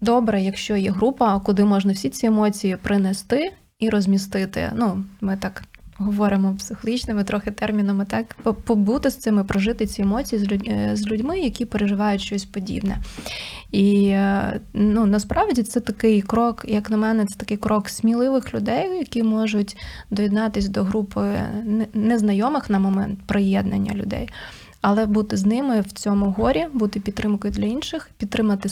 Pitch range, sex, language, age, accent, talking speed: 200-225 Hz, female, Ukrainian, 20-39, native, 140 wpm